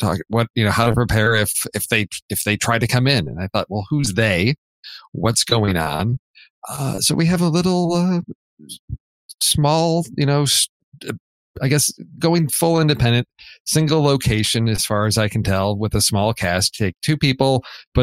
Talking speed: 185 wpm